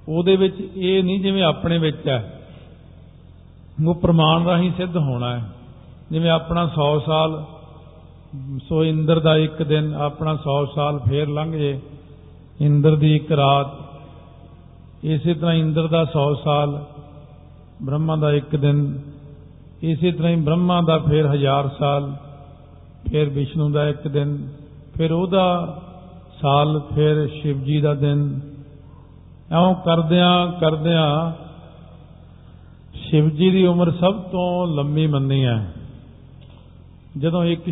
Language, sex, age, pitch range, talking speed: Punjabi, male, 50-69, 135-165 Hz, 120 wpm